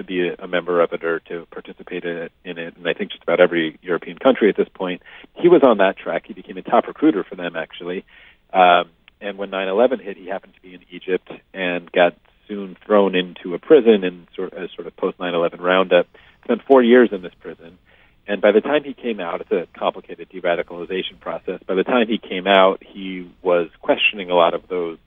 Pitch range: 85-95 Hz